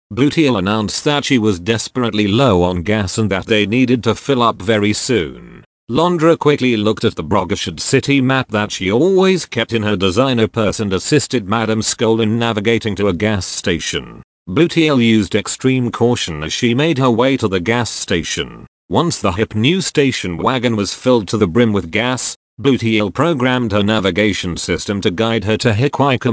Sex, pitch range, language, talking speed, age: male, 105-130 Hz, English, 180 wpm, 40-59